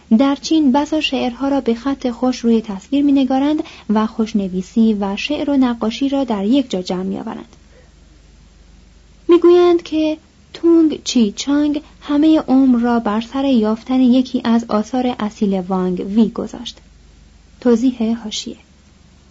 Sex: female